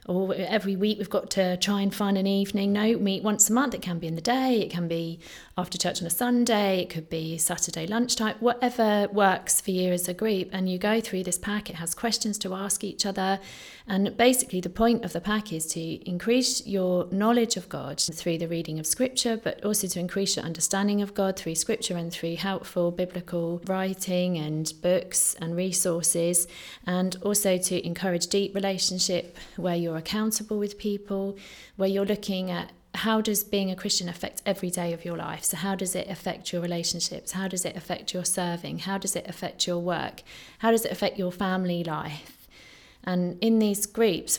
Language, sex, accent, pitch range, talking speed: English, female, British, 175-205 Hz, 200 wpm